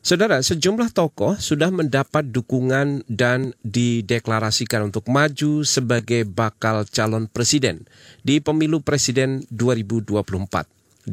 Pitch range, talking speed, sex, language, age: 110-145 Hz, 95 wpm, male, Indonesian, 40-59